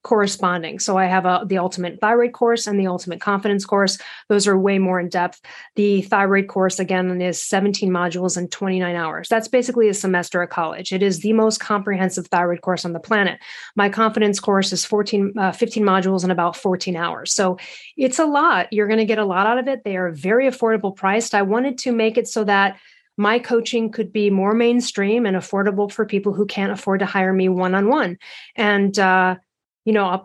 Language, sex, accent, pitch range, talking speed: English, female, American, 190-230 Hz, 210 wpm